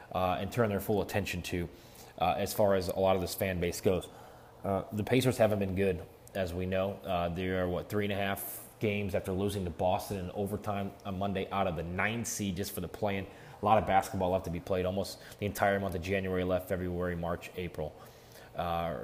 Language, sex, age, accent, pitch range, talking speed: English, male, 20-39, American, 95-110 Hz, 225 wpm